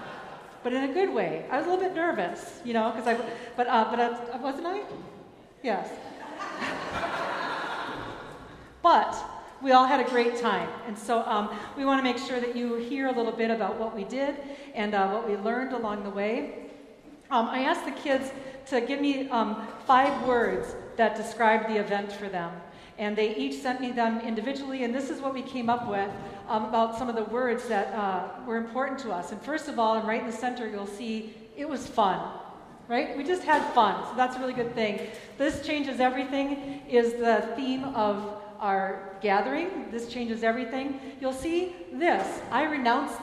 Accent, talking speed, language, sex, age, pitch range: American, 195 wpm, English, female, 40-59, 220-270 Hz